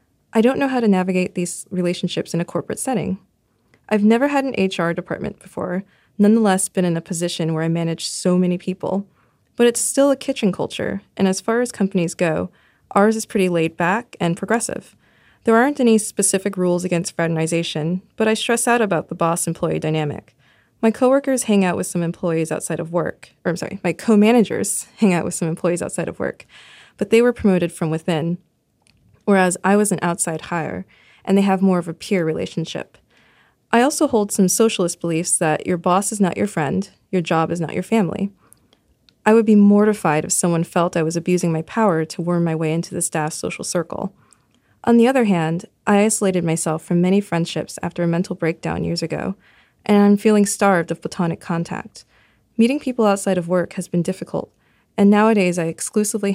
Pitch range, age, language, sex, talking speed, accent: 170-210 Hz, 20-39, English, female, 195 wpm, American